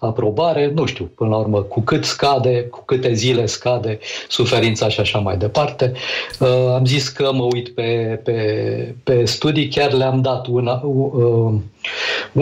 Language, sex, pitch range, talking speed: Romanian, male, 115-140 Hz, 160 wpm